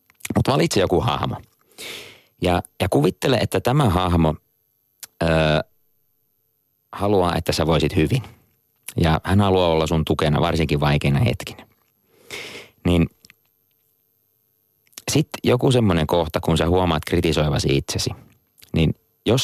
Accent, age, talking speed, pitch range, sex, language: native, 30-49, 115 wpm, 80-115 Hz, male, Finnish